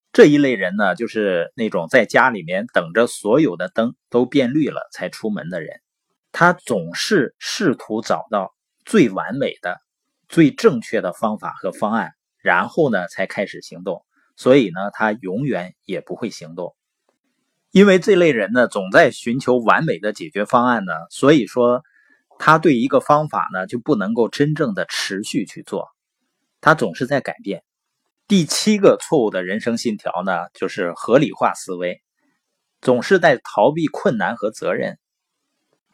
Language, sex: Chinese, male